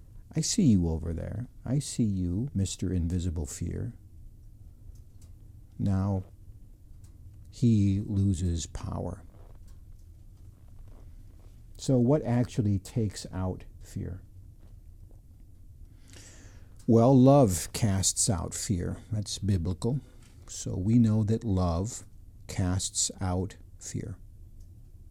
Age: 60-79